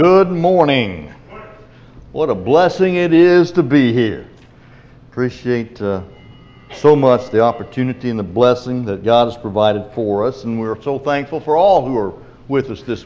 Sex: male